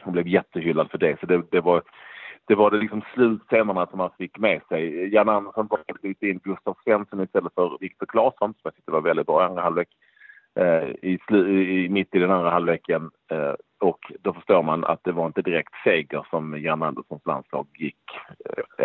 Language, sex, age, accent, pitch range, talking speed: Swedish, male, 40-59, Norwegian, 90-110 Hz, 205 wpm